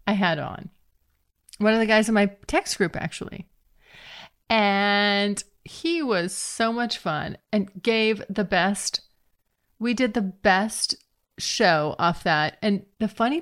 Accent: American